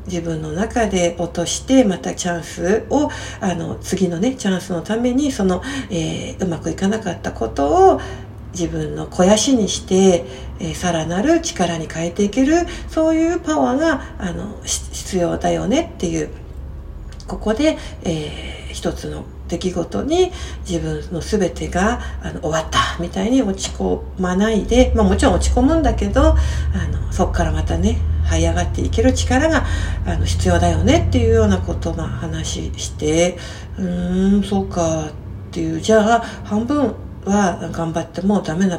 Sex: female